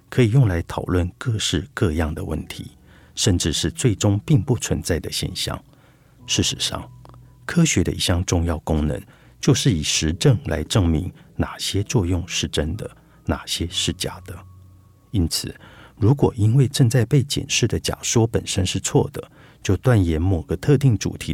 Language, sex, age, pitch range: Chinese, male, 50-69, 85-120 Hz